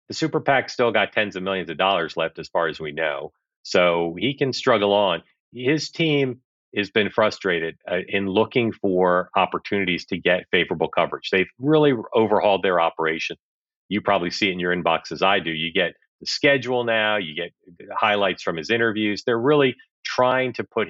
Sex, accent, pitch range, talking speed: male, American, 90-115 Hz, 190 wpm